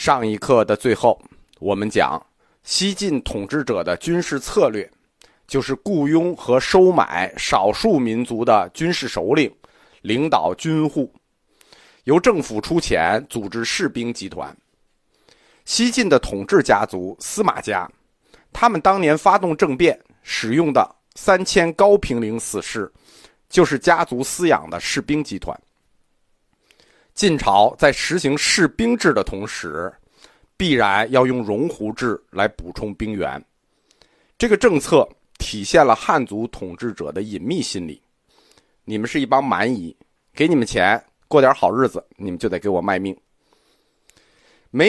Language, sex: Chinese, male